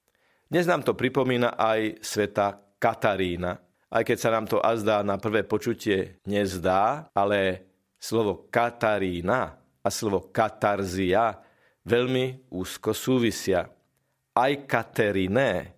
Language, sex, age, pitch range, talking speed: Slovak, male, 50-69, 100-125 Hz, 105 wpm